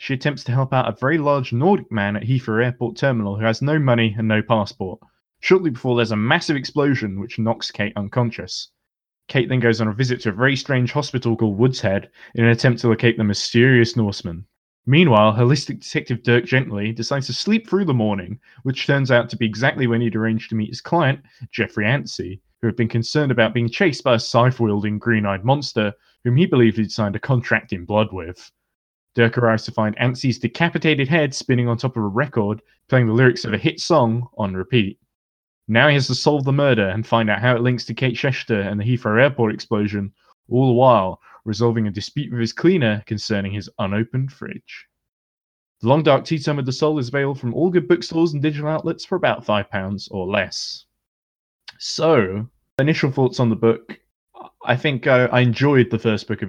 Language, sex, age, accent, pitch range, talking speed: English, male, 20-39, British, 110-135 Hz, 205 wpm